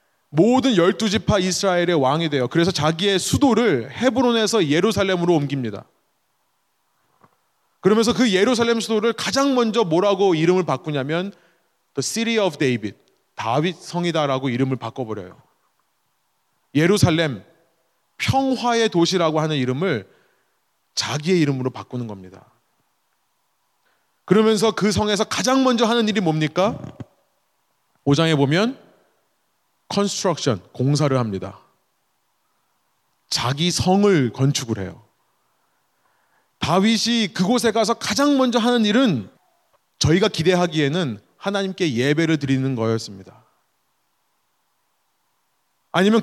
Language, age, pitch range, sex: Korean, 30-49, 145-220 Hz, male